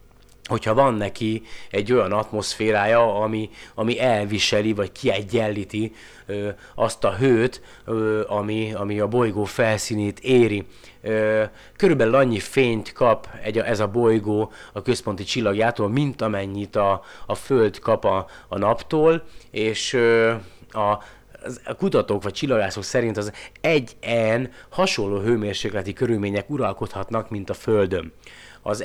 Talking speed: 115 wpm